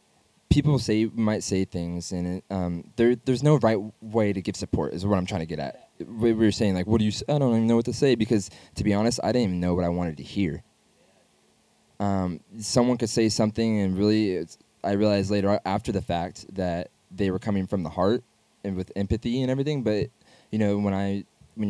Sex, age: male, 20-39